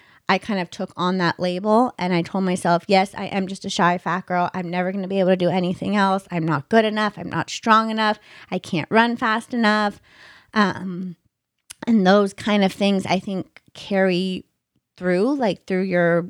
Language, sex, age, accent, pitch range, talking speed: English, female, 30-49, American, 180-210 Hz, 205 wpm